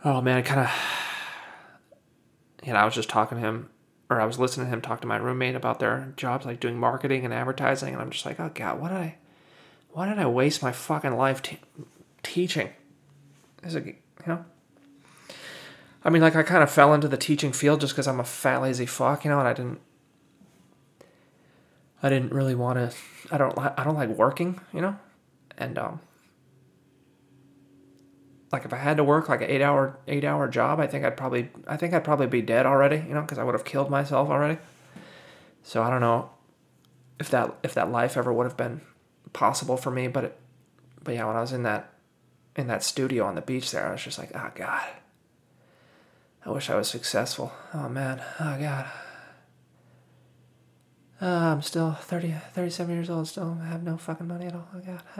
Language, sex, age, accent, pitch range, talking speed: English, male, 20-39, American, 125-160 Hz, 205 wpm